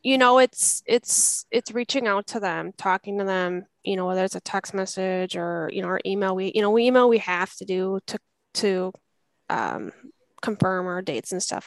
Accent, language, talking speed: American, English, 210 wpm